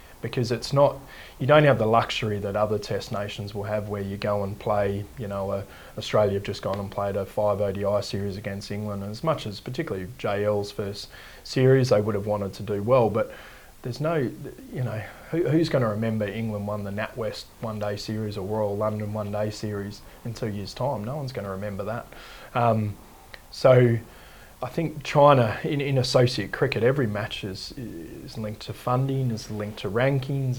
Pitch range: 100-120 Hz